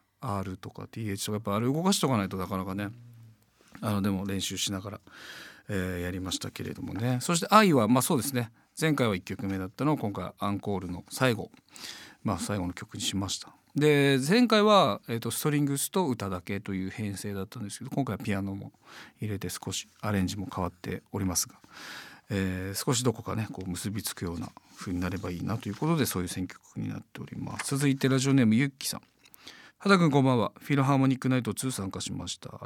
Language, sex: Japanese, male